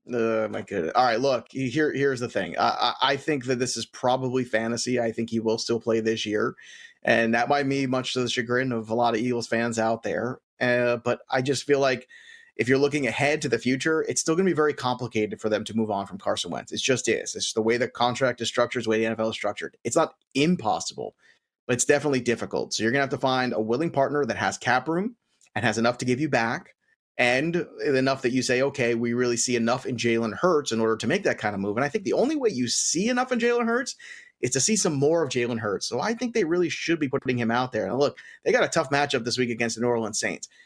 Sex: male